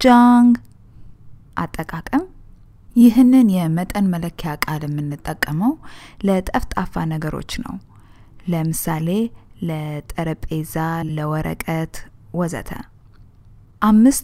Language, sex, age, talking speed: English, female, 20-39, 50 wpm